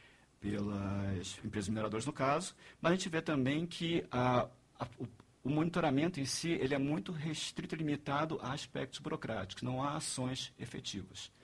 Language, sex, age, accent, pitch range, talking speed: Portuguese, male, 50-69, Brazilian, 115-145 Hz, 155 wpm